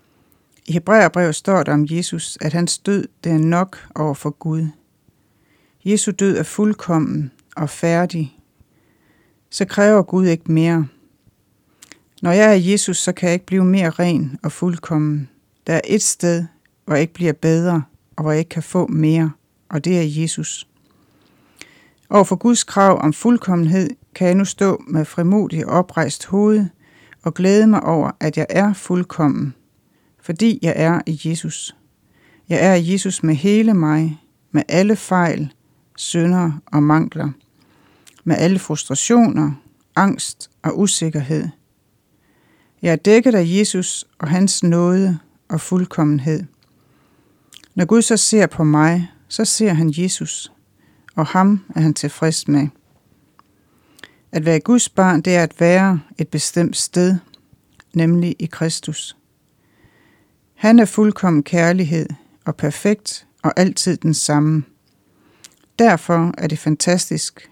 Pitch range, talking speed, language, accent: 155-185 Hz, 140 wpm, Danish, native